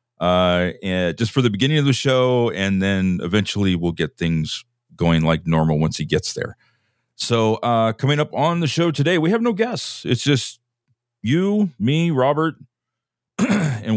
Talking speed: 170 wpm